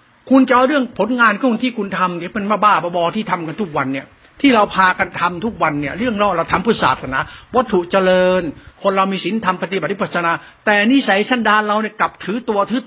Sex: male